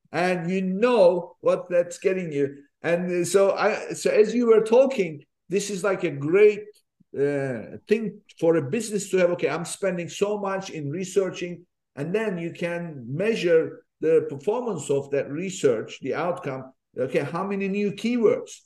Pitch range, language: 160-215 Hz, English